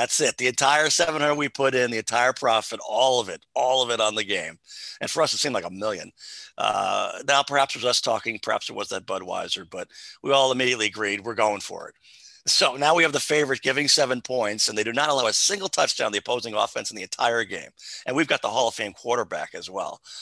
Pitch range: 115-150 Hz